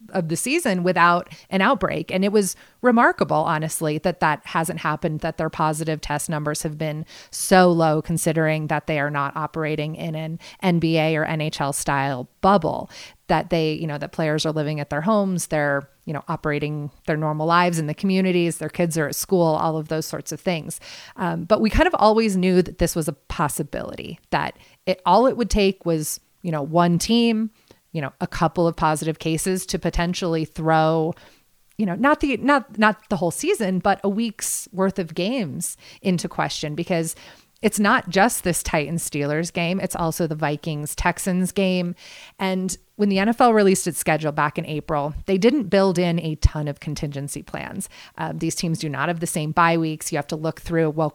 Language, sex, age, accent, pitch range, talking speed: English, female, 30-49, American, 155-190 Hz, 195 wpm